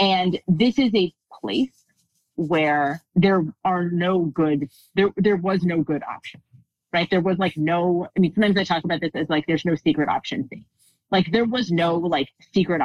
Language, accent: English, American